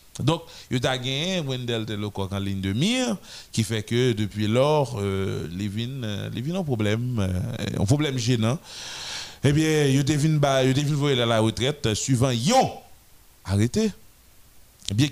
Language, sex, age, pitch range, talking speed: French, male, 30-49, 105-150 Hz, 125 wpm